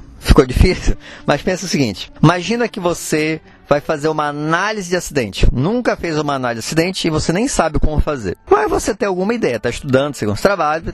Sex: male